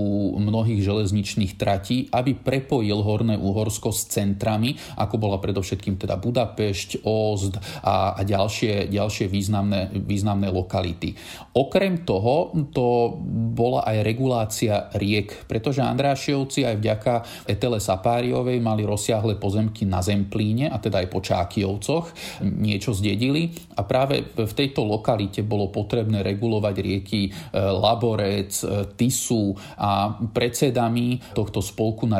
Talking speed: 120 wpm